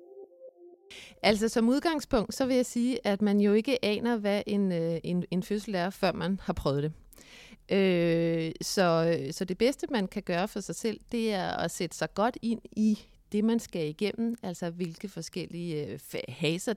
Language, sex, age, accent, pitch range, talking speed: Danish, female, 30-49, native, 175-225 Hz, 180 wpm